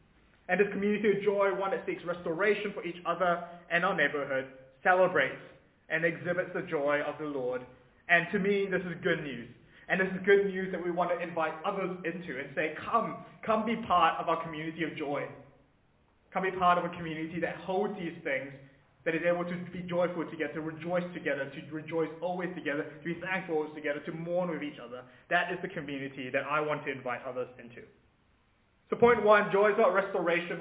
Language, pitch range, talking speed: English, 145-185 Hz, 205 wpm